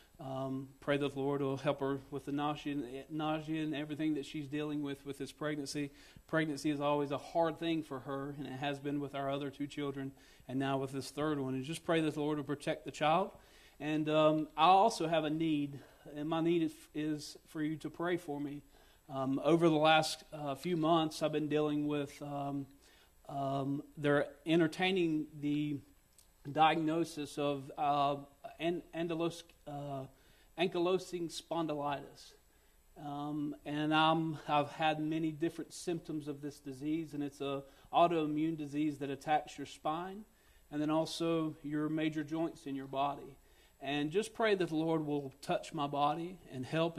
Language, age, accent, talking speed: English, 40-59, American, 180 wpm